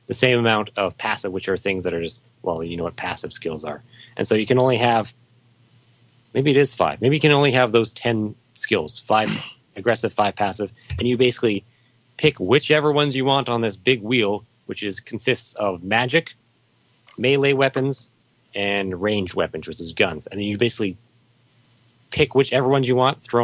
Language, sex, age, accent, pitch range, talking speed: English, male, 30-49, American, 105-125 Hz, 190 wpm